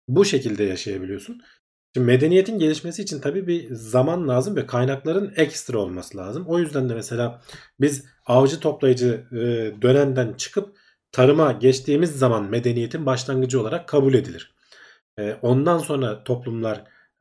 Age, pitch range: 40-59, 110-145 Hz